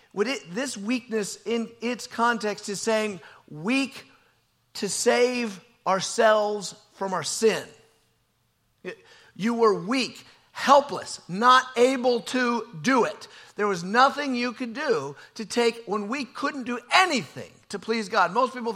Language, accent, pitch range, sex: English, American, 200-250 Hz, male